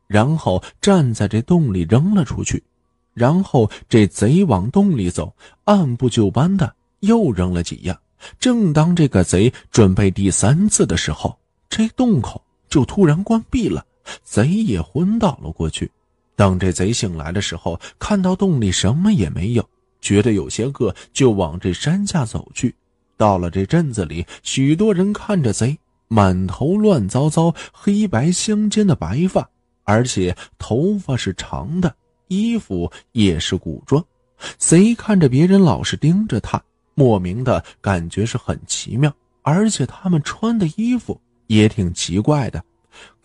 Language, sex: Chinese, male